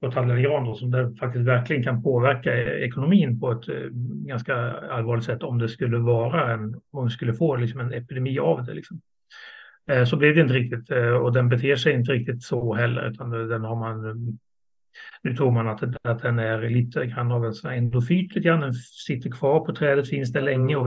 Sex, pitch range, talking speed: male, 120-140 Hz, 180 wpm